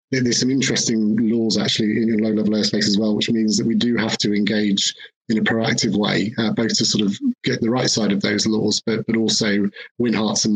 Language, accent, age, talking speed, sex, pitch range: English, British, 30-49, 235 wpm, male, 105-115 Hz